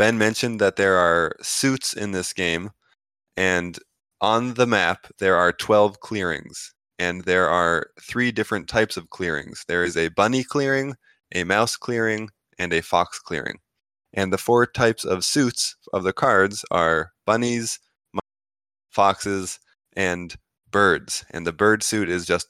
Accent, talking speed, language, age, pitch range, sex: American, 150 wpm, English, 20-39, 90-110 Hz, male